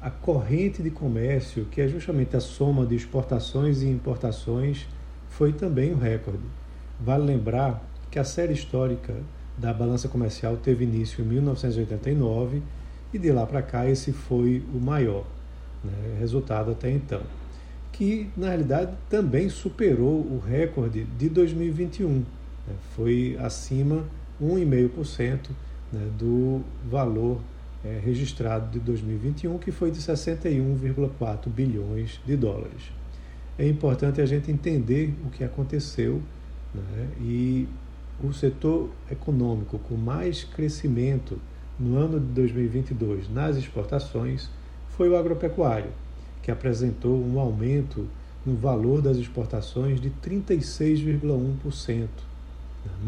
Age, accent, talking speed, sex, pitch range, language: 50-69, Brazilian, 120 wpm, male, 110-145 Hz, Portuguese